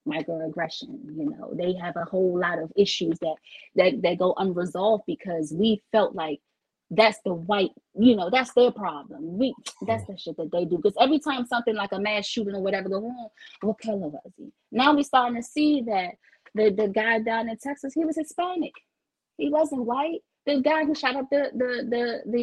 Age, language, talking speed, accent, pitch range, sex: 20-39, English, 200 wpm, American, 195-260 Hz, female